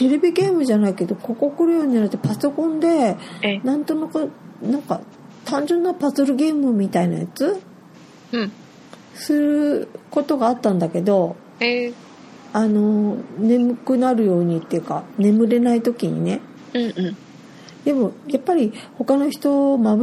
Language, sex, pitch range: Japanese, female, 190-265 Hz